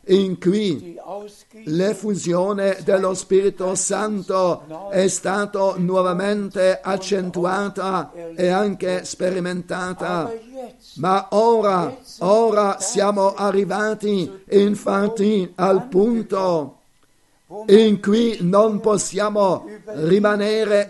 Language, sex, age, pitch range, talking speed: Italian, male, 50-69, 190-210 Hz, 75 wpm